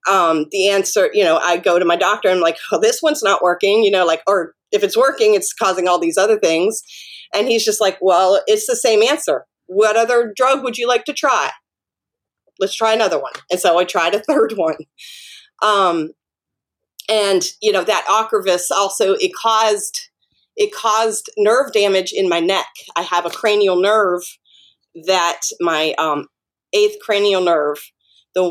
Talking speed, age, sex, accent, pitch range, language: 185 wpm, 30-49, female, American, 175-230 Hz, English